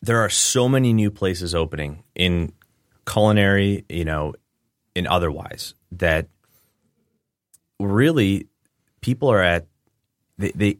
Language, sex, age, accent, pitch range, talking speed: English, male, 30-49, American, 80-100 Hz, 110 wpm